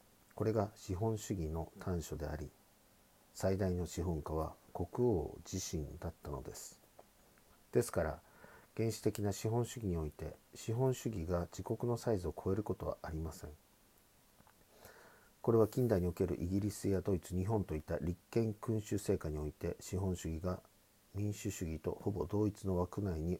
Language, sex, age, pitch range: Japanese, male, 50-69, 85-105 Hz